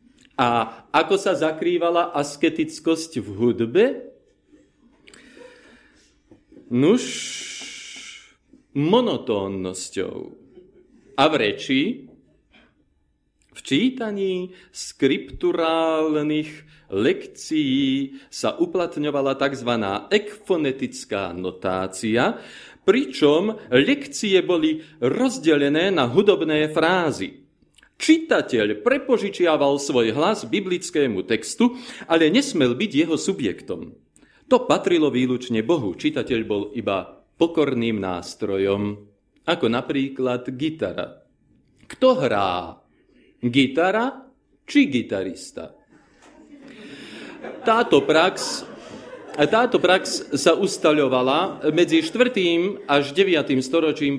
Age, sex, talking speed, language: 40-59, male, 75 wpm, Slovak